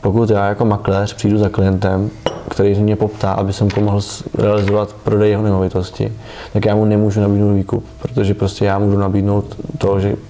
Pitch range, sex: 100-115 Hz, male